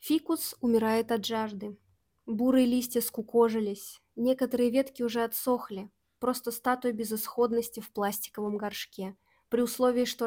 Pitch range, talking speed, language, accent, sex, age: 215-255 Hz, 115 wpm, Russian, native, female, 20-39